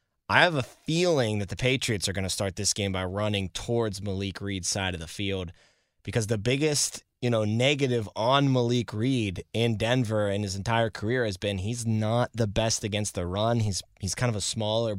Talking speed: 210 wpm